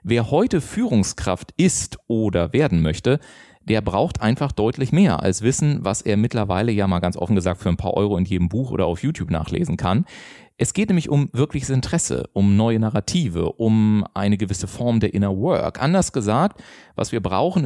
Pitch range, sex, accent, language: 100-135 Hz, male, German, German